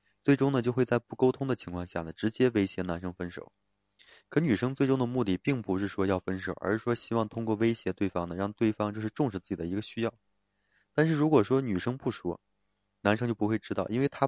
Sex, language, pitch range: male, Chinese, 95-115 Hz